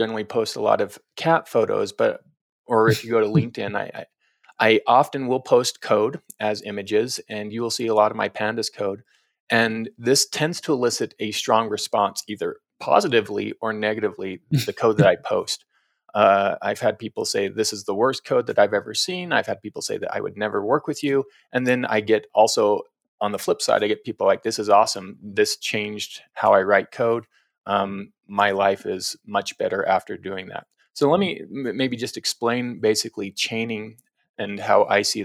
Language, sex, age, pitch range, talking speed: English, male, 30-49, 105-160 Hz, 195 wpm